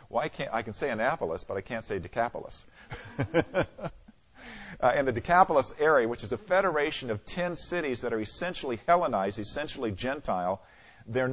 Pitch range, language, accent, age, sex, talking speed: 110-145 Hz, English, American, 50-69, male, 160 wpm